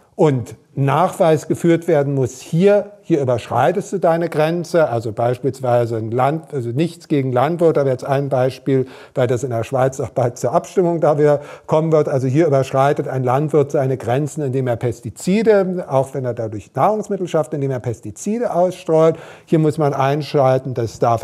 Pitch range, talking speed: 130-170 Hz, 170 wpm